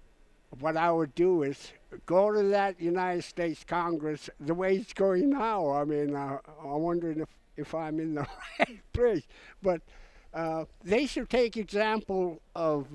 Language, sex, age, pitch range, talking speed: English, male, 60-79, 140-180 Hz, 160 wpm